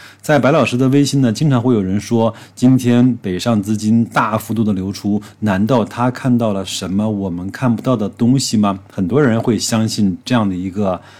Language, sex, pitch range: Chinese, male, 105-130 Hz